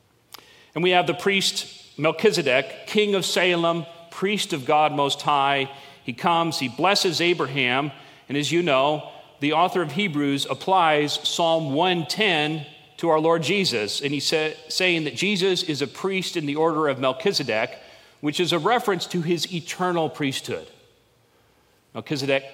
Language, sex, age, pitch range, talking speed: English, male, 40-59, 135-175 Hz, 150 wpm